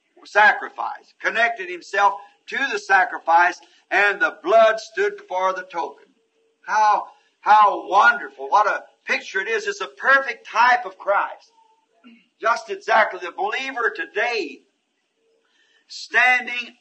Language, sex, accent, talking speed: English, male, American, 120 wpm